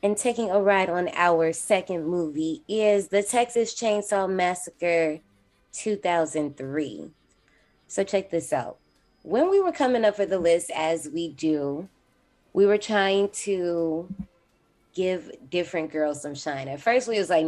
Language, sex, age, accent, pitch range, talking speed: English, female, 20-39, American, 145-195 Hz, 150 wpm